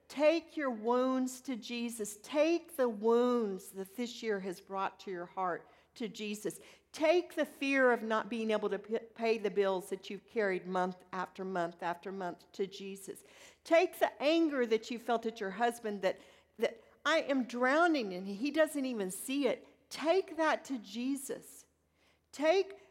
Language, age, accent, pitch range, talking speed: English, 50-69, American, 200-275 Hz, 170 wpm